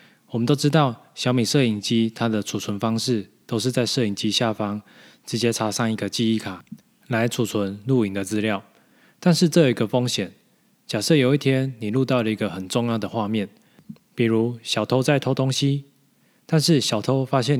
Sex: male